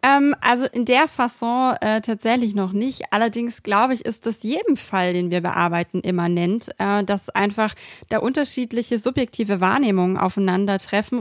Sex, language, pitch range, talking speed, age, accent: female, German, 210-240 Hz, 150 wpm, 30-49, German